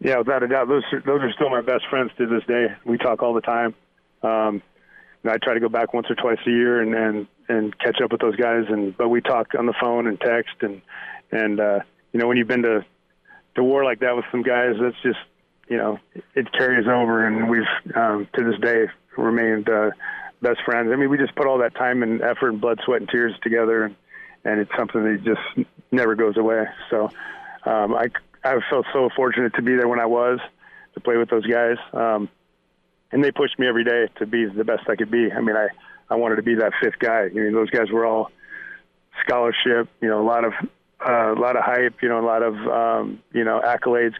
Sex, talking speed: male, 240 wpm